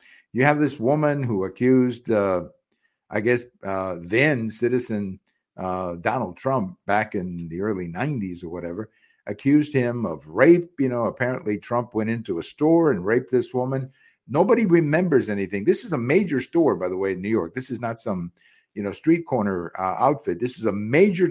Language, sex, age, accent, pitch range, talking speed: English, male, 50-69, American, 105-150 Hz, 185 wpm